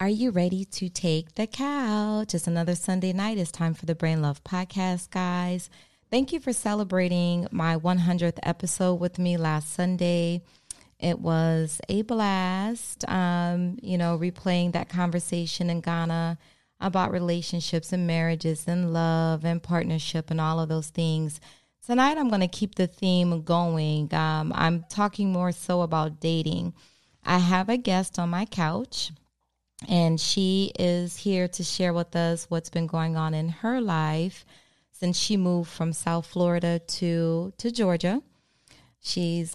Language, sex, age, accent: English, female, 20-39, American